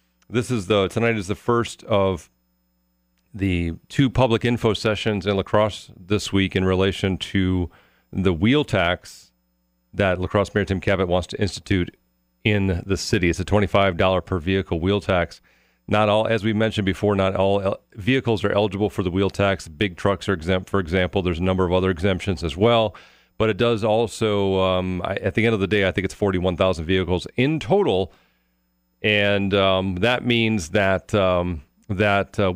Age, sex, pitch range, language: 40-59, male, 85-105 Hz, English